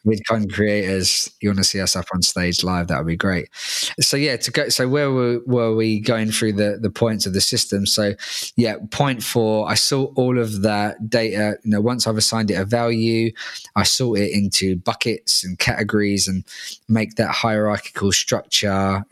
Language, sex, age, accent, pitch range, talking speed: English, male, 20-39, British, 95-110 Hz, 205 wpm